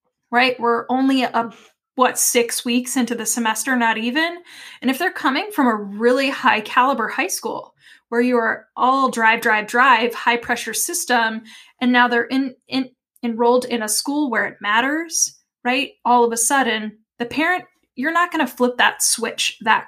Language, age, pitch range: English, 10-29, 220-265 Hz